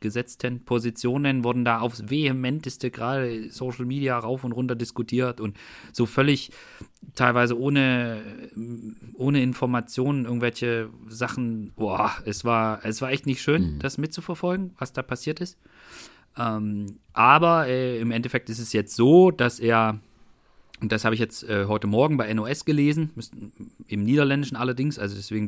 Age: 40-59